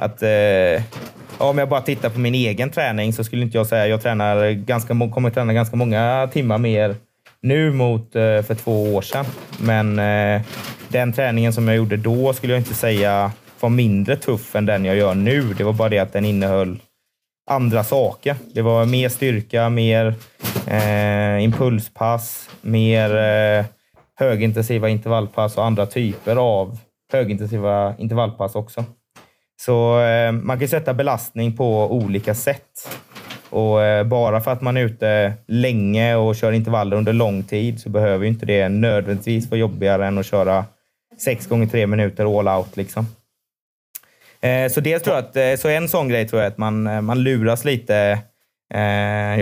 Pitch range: 105-120 Hz